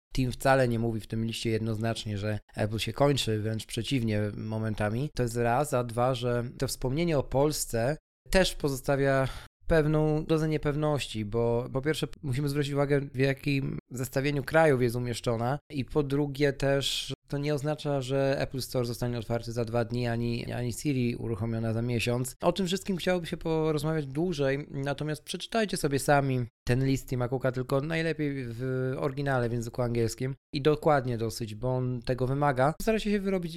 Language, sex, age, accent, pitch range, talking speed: Polish, male, 20-39, native, 115-145 Hz, 170 wpm